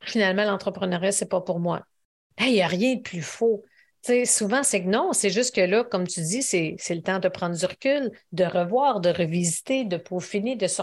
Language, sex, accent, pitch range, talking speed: French, female, Canadian, 185-230 Hz, 235 wpm